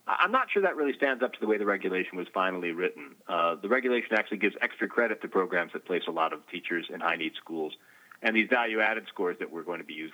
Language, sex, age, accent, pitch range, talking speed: English, male, 40-59, American, 110-180 Hz, 255 wpm